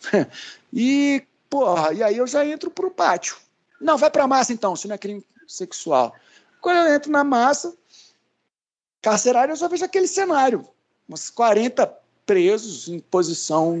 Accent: Brazilian